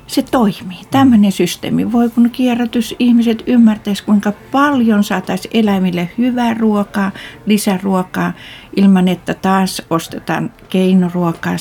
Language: Finnish